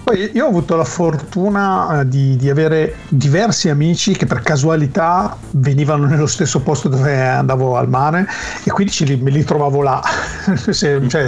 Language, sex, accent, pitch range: Italian, male, native, 130-165 Hz